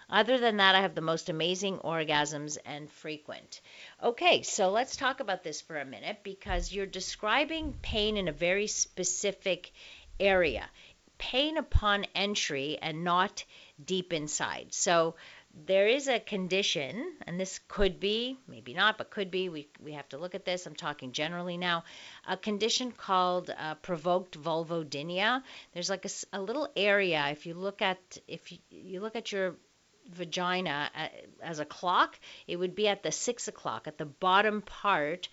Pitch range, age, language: 165-205 Hz, 50-69, English